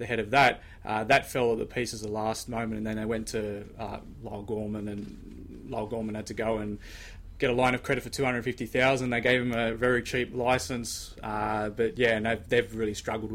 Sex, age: male, 20-39